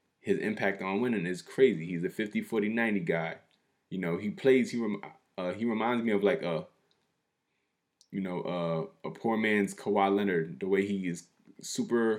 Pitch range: 95-105 Hz